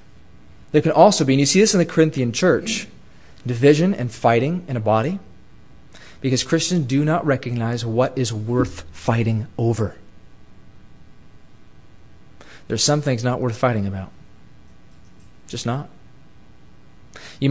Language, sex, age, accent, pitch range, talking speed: English, male, 30-49, American, 110-145 Hz, 135 wpm